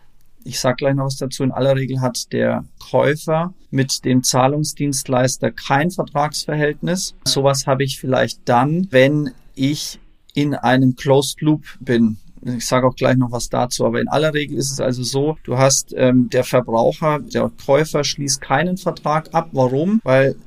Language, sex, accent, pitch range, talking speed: German, male, German, 130-150 Hz, 165 wpm